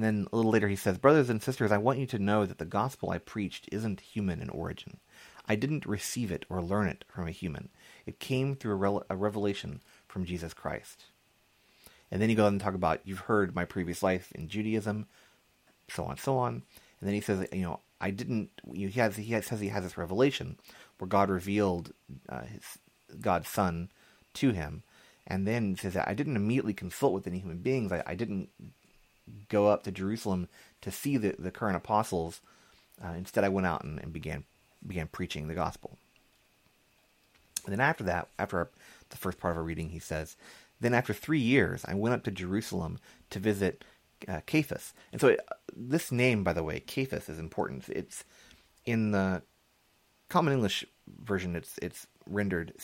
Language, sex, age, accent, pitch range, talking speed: English, male, 30-49, American, 90-110 Hz, 195 wpm